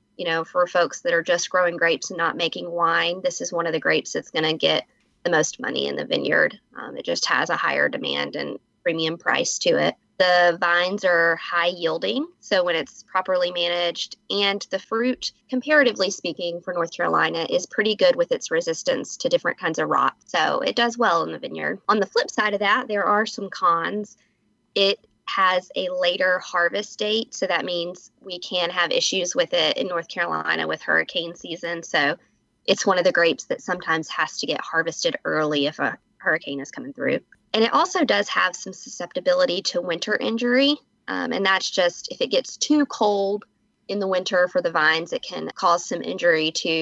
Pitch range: 170-220 Hz